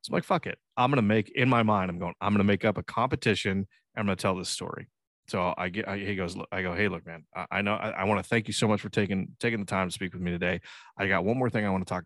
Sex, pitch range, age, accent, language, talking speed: male, 95-115 Hz, 20-39, American, English, 350 wpm